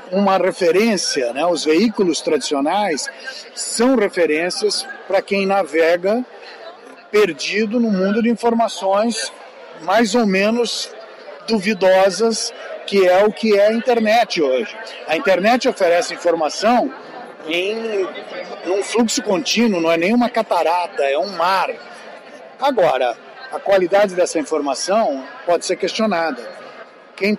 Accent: Brazilian